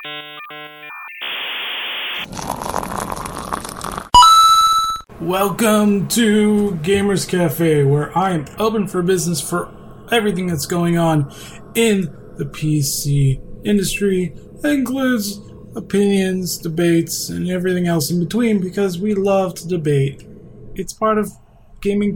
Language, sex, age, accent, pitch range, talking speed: English, male, 20-39, American, 150-200 Hz, 100 wpm